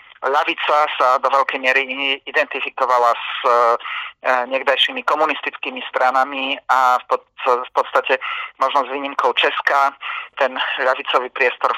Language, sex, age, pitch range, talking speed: Slovak, male, 30-49, 125-140 Hz, 115 wpm